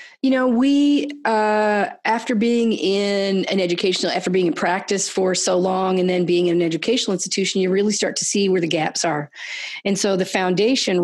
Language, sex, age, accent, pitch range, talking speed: English, female, 40-59, American, 170-200 Hz, 195 wpm